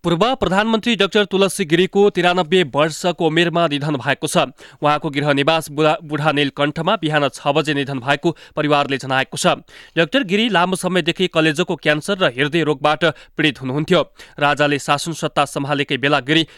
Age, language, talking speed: 30-49, English, 110 wpm